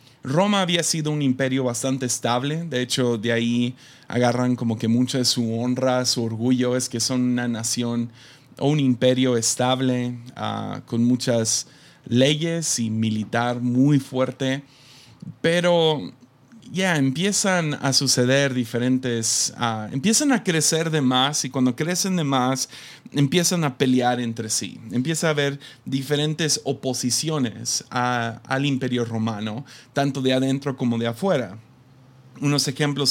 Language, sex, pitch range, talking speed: Spanish, male, 125-145 Hz, 140 wpm